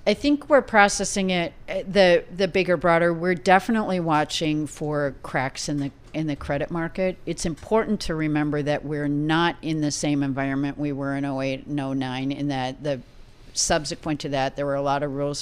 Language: English